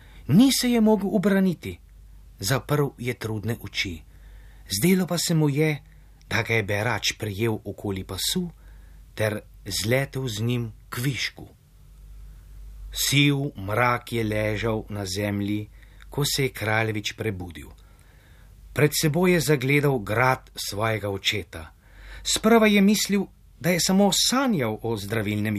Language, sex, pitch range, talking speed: English, male, 100-155 Hz, 125 wpm